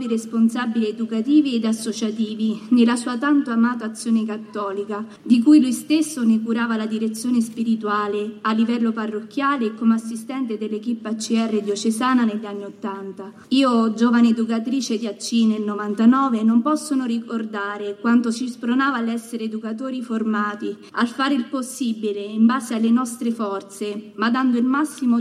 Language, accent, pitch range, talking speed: Italian, native, 215-250 Hz, 145 wpm